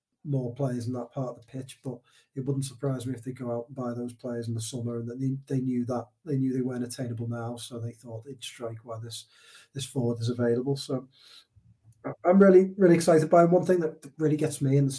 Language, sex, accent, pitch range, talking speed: English, male, British, 125-145 Hz, 250 wpm